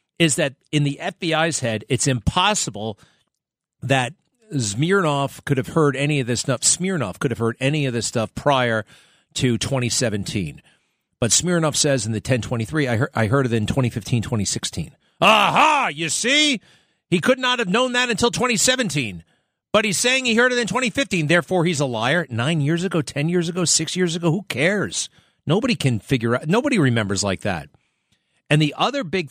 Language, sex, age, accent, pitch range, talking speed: English, male, 40-59, American, 120-170 Hz, 180 wpm